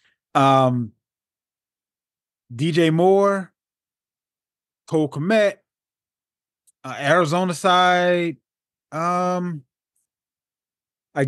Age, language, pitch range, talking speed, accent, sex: 20-39, English, 125-170 Hz, 55 wpm, American, male